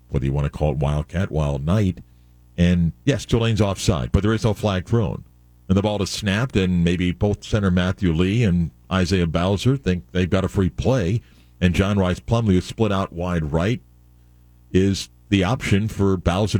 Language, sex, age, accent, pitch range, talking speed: English, male, 50-69, American, 80-100 Hz, 190 wpm